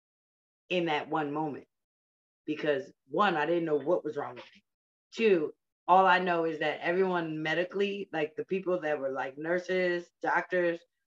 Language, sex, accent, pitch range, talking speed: English, female, American, 150-200 Hz, 165 wpm